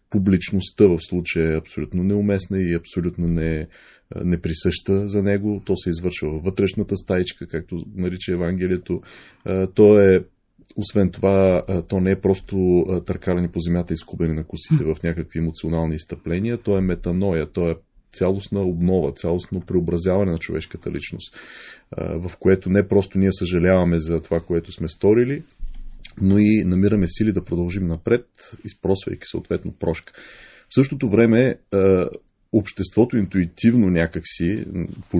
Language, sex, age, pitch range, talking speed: Bulgarian, male, 30-49, 85-105 Hz, 135 wpm